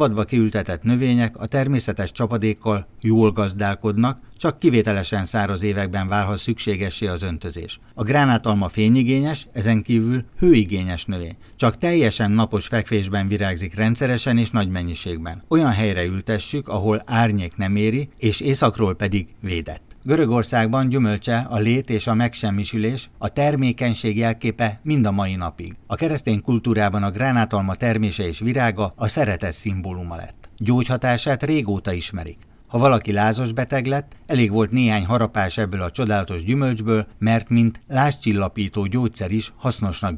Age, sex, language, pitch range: 60-79, male, Hungarian, 100-120 Hz